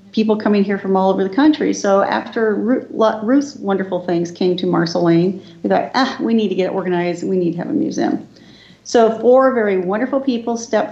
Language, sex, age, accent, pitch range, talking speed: English, female, 40-59, American, 180-215 Hz, 200 wpm